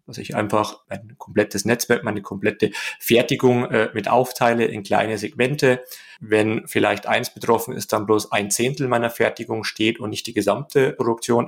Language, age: German, 30-49